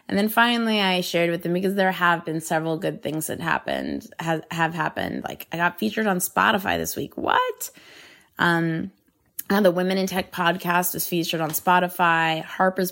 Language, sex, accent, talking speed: English, female, American, 180 wpm